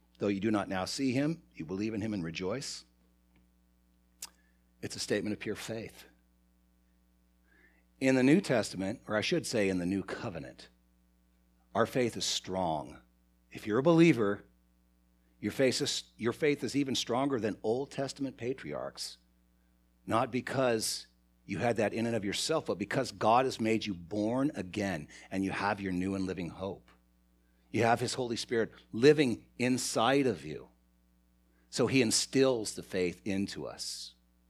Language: English